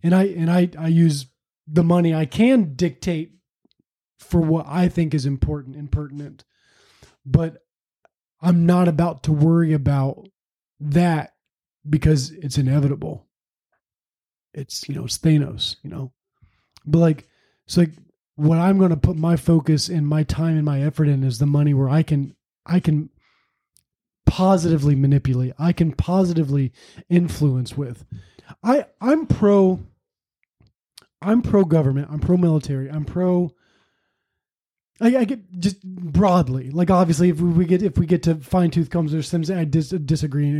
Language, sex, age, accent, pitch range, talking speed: English, male, 30-49, American, 145-175 Hz, 155 wpm